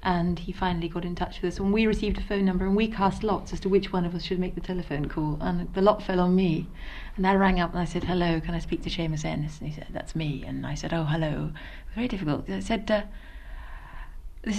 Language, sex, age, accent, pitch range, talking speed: English, female, 40-59, British, 170-210 Hz, 275 wpm